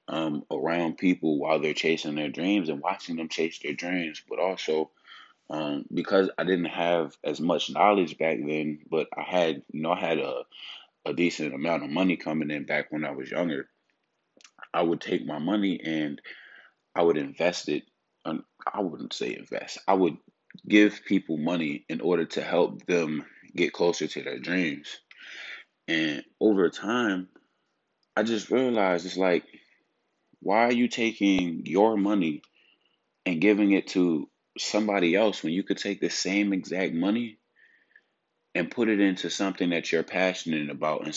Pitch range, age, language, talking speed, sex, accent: 80-100 Hz, 20-39, English, 165 wpm, male, American